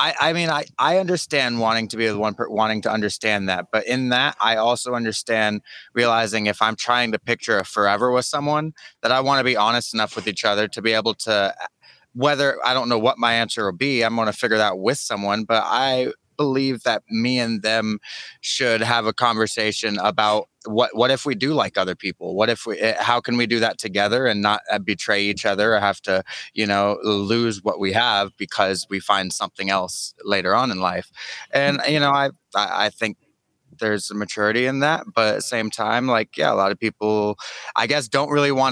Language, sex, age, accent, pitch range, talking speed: English, male, 20-39, American, 105-125 Hz, 215 wpm